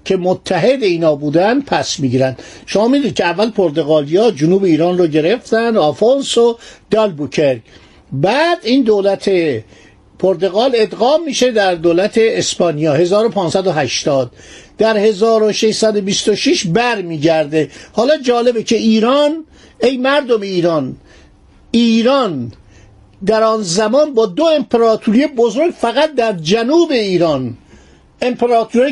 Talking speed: 105 wpm